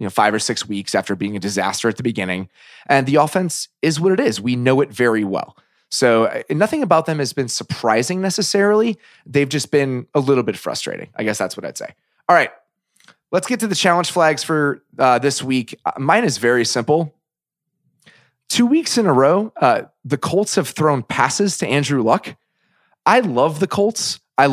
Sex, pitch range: male, 120-180 Hz